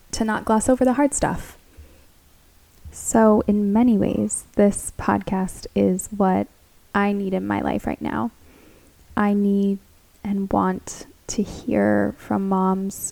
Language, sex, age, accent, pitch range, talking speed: English, female, 10-29, American, 185-215 Hz, 135 wpm